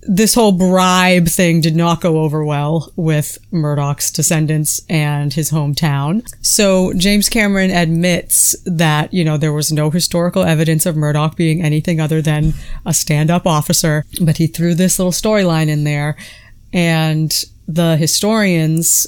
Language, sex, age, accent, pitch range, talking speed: English, female, 30-49, American, 150-180 Hz, 150 wpm